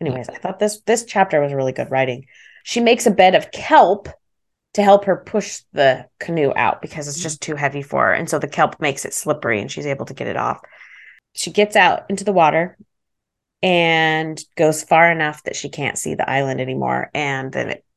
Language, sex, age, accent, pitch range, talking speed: English, female, 30-49, American, 150-205 Hz, 215 wpm